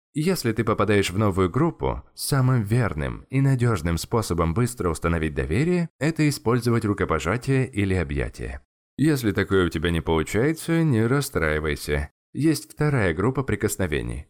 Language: Russian